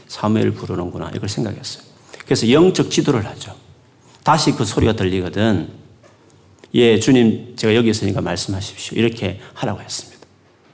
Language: Korean